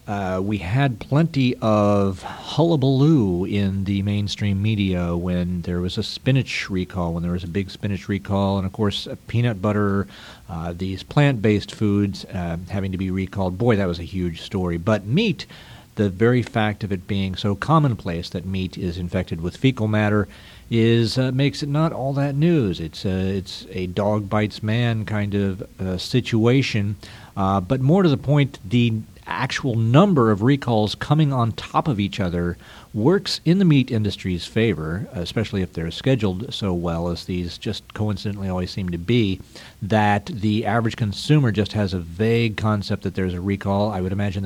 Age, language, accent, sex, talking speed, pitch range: 50-69, English, American, male, 180 wpm, 95-115 Hz